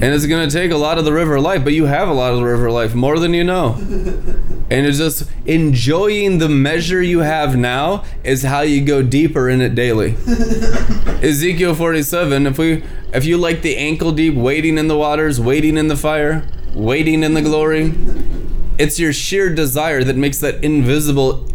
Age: 20-39